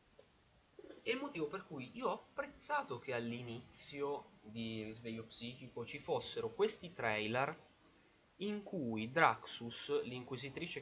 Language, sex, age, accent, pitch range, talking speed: Italian, male, 20-39, native, 110-160 Hz, 115 wpm